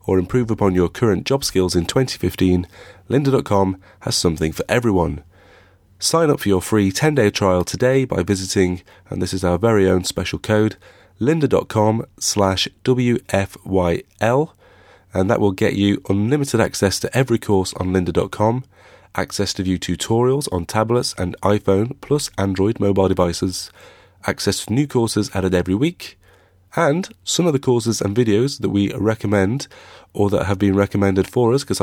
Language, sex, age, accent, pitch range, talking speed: English, male, 30-49, British, 95-115 Hz, 160 wpm